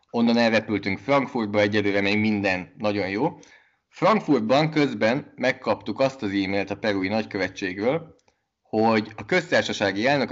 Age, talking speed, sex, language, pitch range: 20-39, 120 wpm, male, Hungarian, 100-110 Hz